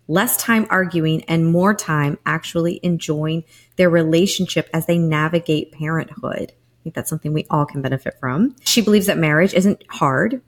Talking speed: 165 wpm